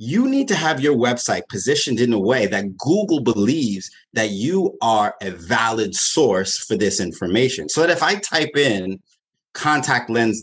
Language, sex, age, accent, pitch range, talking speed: English, male, 30-49, American, 105-150 Hz, 175 wpm